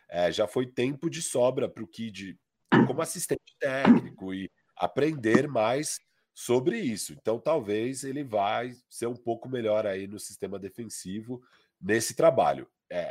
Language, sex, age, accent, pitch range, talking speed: Portuguese, male, 40-59, Brazilian, 110-160 Hz, 145 wpm